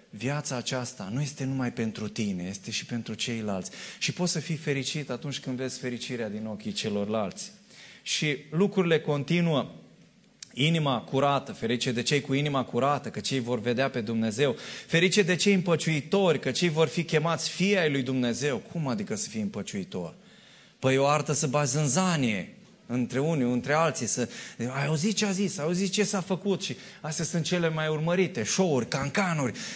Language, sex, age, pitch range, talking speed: Romanian, male, 20-39, 125-190 Hz, 175 wpm